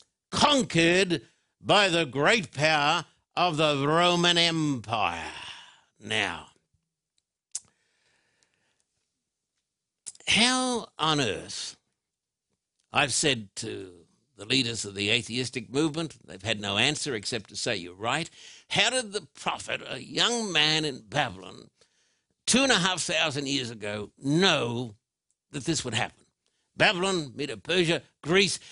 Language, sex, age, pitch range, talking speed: English, male, 60-79, 145-205 Hz, 115 wpm